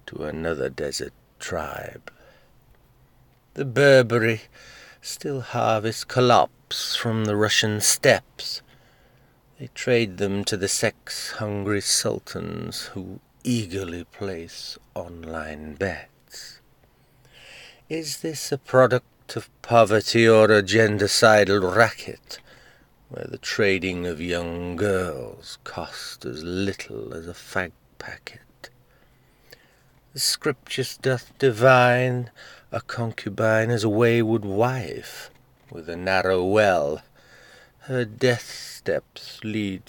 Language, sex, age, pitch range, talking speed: English, male, 50-69, 95-120 Hz, 100 wpm